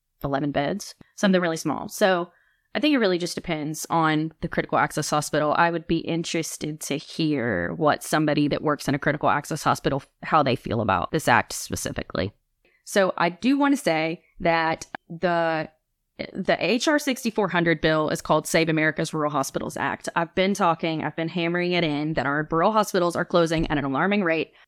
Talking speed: 185 wpm